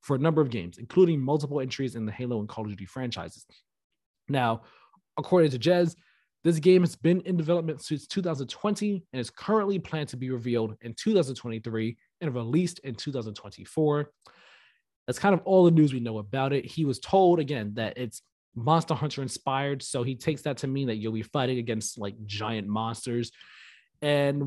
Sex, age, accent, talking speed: male, 20-39, American, 185 wpm